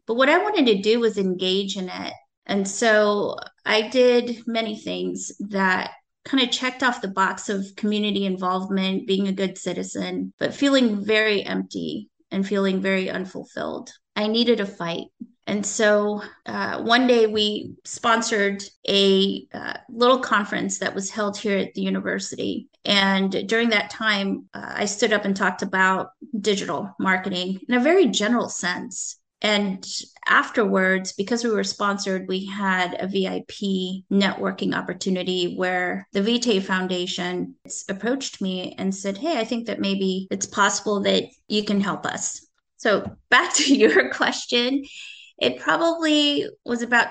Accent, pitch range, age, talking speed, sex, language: American, 190-230 Hz, 30-49, 150 wpm, female, English